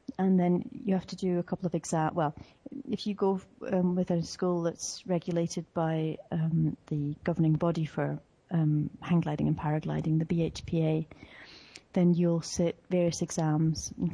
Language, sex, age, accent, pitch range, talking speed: English, female, 30-49, British, 160-185 Hz, 165 wpm